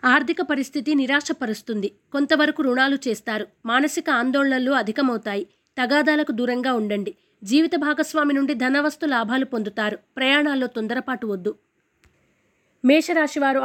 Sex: female